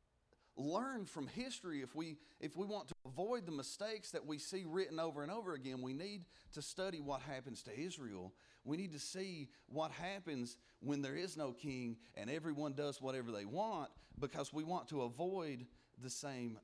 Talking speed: 190 wpm